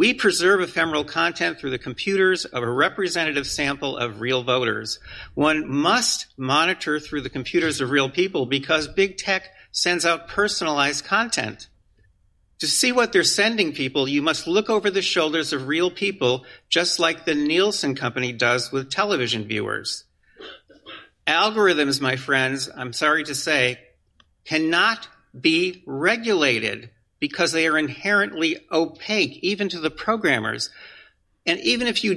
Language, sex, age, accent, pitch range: Japanese, male, 50-69, American, 135-190 Hz